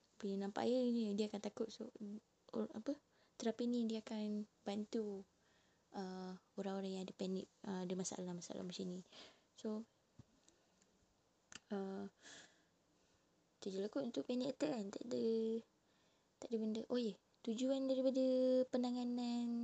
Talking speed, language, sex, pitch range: 120 wpm, Malay, female, 200-245 Hz